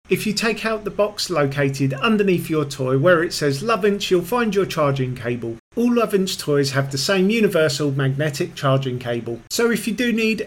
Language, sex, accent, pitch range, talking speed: English, male, British, 140-195 Hz, 195 wpm